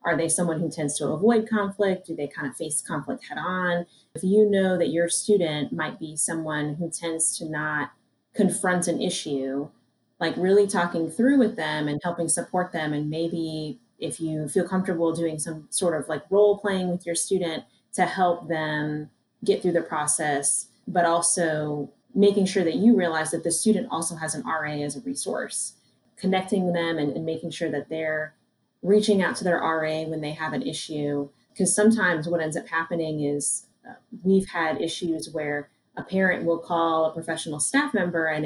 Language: English